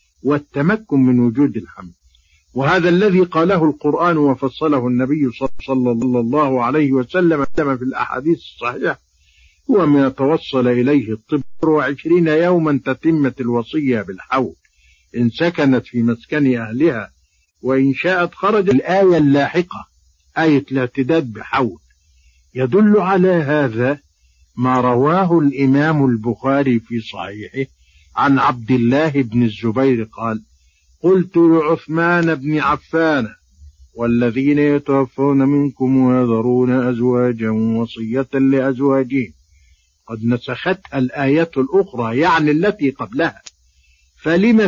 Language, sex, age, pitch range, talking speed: Arabic, male, 50-69, 115-160 Hz, 100 wpm